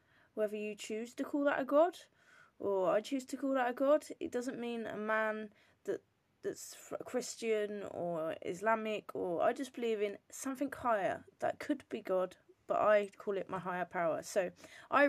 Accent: British